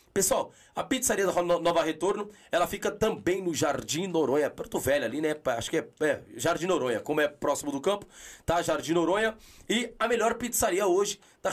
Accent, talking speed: Brazilian, 185 wpm